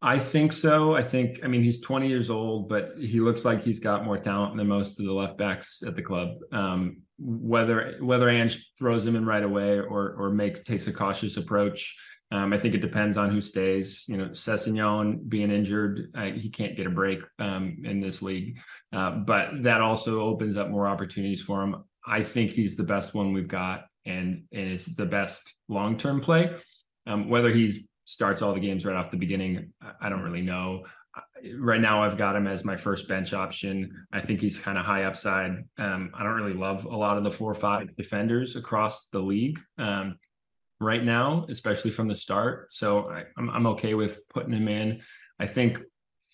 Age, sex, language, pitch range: 20-39, male, English, 100-115 Hz